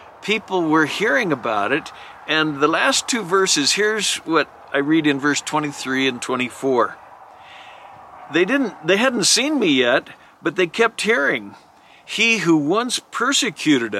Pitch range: 130-185 Hz